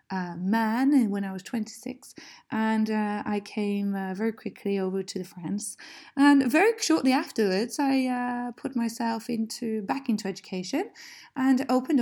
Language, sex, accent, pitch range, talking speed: English, female, British, 200-265 Hz, 155 wpm